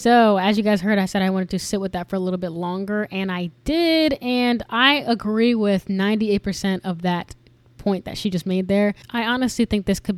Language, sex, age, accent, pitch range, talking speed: English, female, 10-29, American, 180-205 Hz, 230 wpm